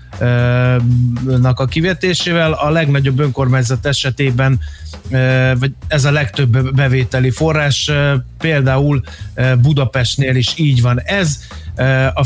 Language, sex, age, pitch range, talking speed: Hungarian, male, 30-49, 125-150 Hz, 90 wpm